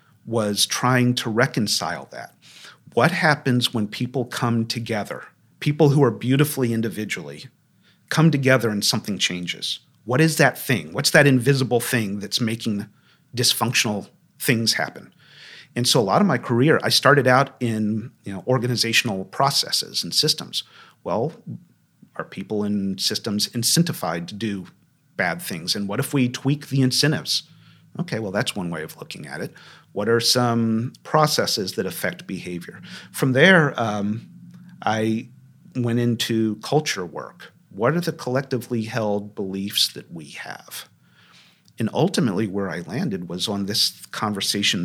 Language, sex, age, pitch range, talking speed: English, male, 40-59, 105-135 Hz, 145 wpm